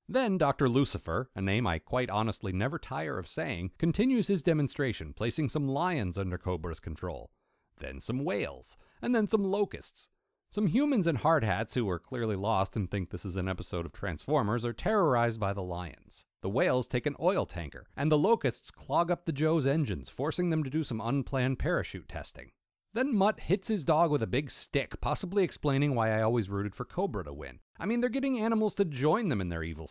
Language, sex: English, male